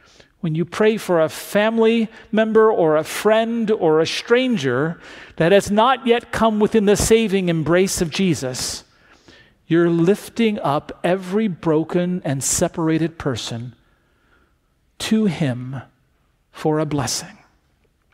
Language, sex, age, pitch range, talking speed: English, male, 40-59, 160-220 Hz, 120 wpm